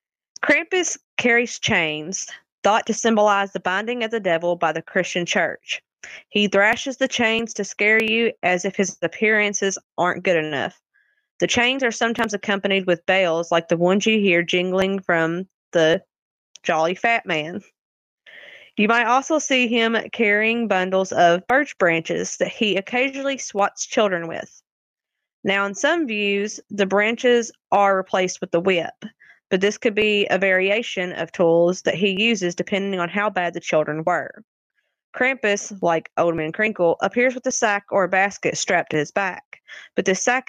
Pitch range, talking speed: 180-230 Hz, 165 wpm